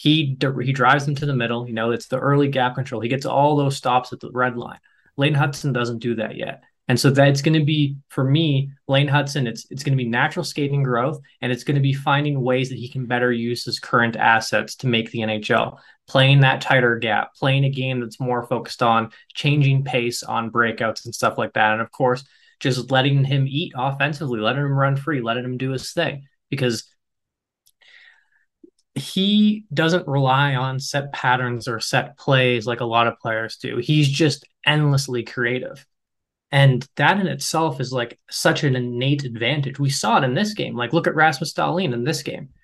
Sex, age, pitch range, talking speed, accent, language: male, 20-39, 125-145 Hz, 205 wpm, American, English